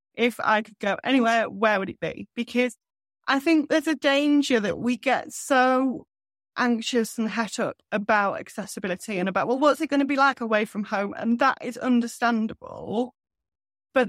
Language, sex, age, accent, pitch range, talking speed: English, female, 30-49, British, 195-240 Hz, 180 wpm